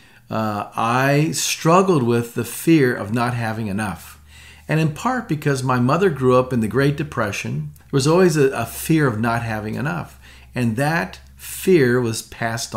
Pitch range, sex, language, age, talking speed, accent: 115-150 Hz, male, English, 40-59, 175 wpm, American